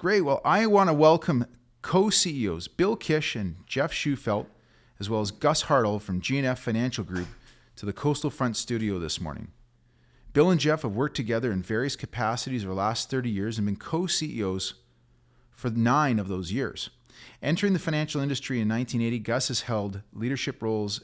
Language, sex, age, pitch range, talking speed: English, male, 40-59, 100-135 Hz, 175 wpm